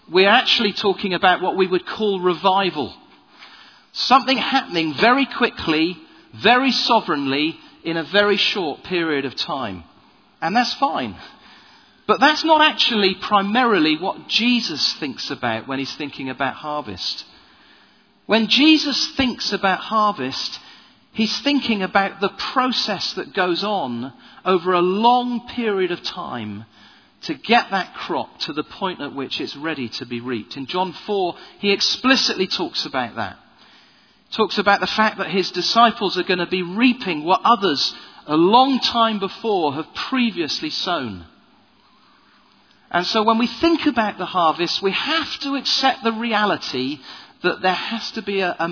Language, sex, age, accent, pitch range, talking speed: English, male, 40-59, British, 175-240 Hz, 150 wpm